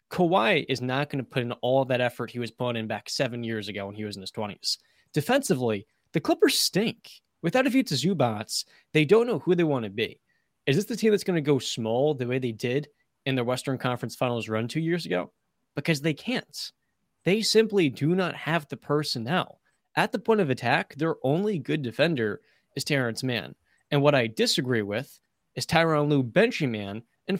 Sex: male